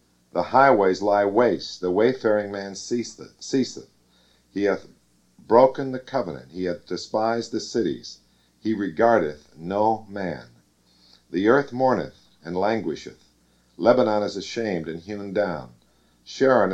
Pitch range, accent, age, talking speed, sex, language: 80-120 Hz, American, 50-69, 125 wpm, male, English